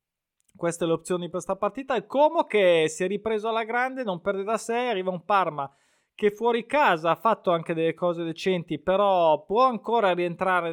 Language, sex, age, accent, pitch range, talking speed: Italian, male, 20-39, native, 165-210 Hz, 190 wpm